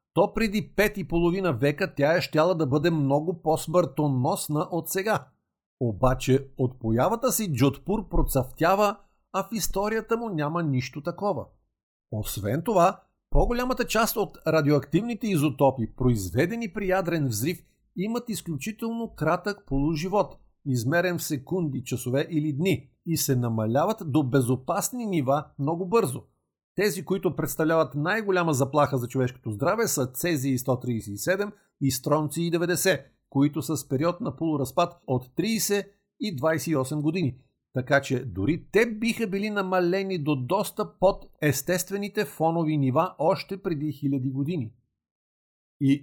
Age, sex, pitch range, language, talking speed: 50-69, male, 130-190 Hz, Bulgarian, 130 wpm